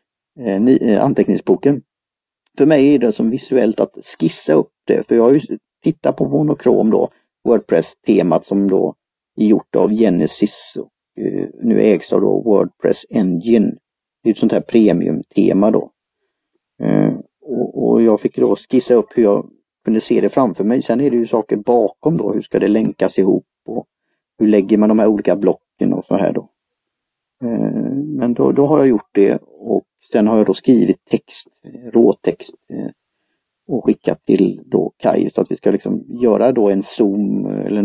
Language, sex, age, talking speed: Swedish, male, 40-59, 180 wpm